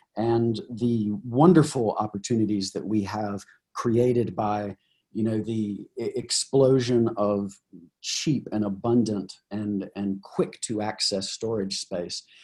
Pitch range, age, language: 105-135 Hz, 40-59, English